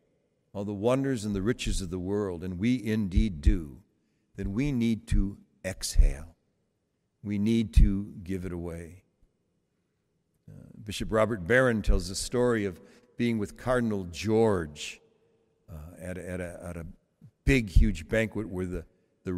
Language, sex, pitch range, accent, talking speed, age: English, male, 90-120 Hz, American, 140 wpm, 60-79